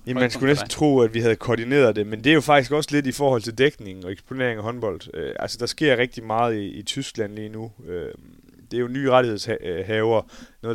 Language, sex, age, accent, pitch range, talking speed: Danish, male, 30-49, native, 100-120 Hz, 240 wpm